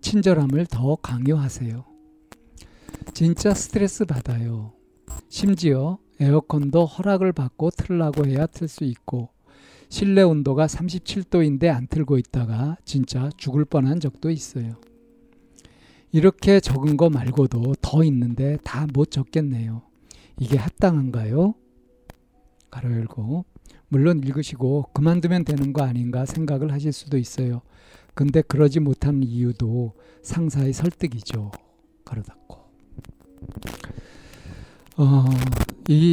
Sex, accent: male, native